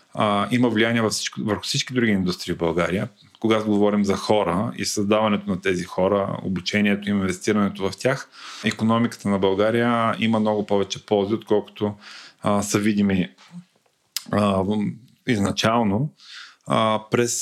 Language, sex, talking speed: Bulgarian, male, 130 wpm